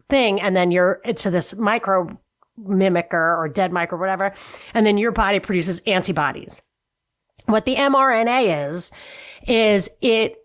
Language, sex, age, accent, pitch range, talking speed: English, female, 40-59, American, 185-240 Hz, 140 wpm